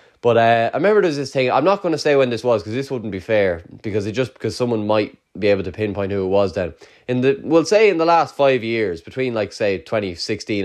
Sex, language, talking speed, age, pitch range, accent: male, English, 265 wpm, 20-39, 100-135 Hz, Irish